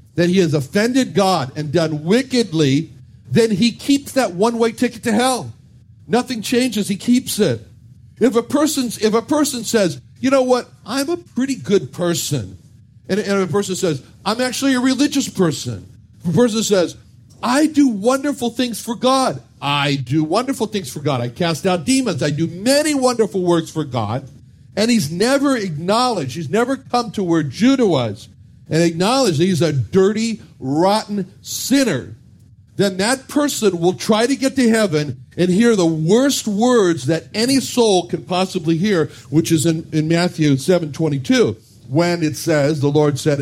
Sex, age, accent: male, 50-69, American